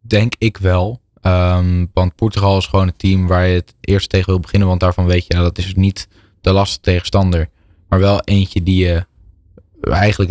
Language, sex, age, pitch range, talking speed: Dutch, male, 10-29, 90-100 Hz, 205 wpm